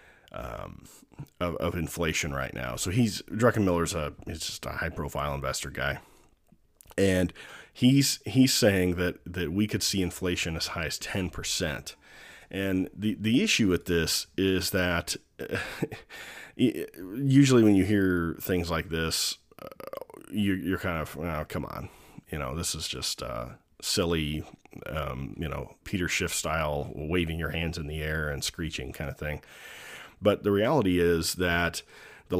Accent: American